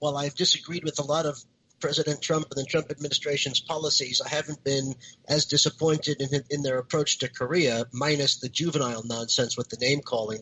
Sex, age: male, 50-69